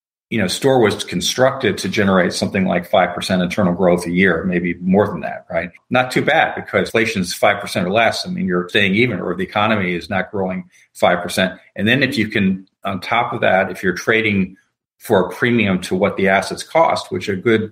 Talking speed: 215 wpm